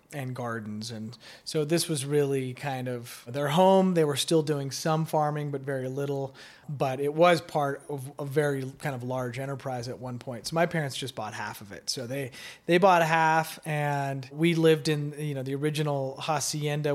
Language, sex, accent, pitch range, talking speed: English, male, American, 125-150 Hz, 200 wpm